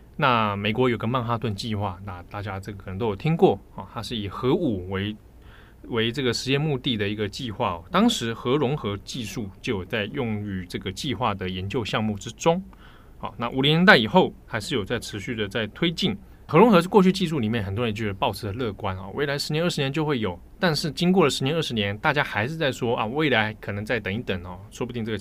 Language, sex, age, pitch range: Chinese, male, 20-39, 100-140 Hz